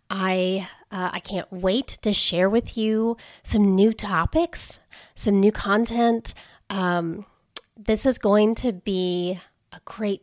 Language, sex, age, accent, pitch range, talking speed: English, female, 30-49, American, 185-230 Hz, 135 wpm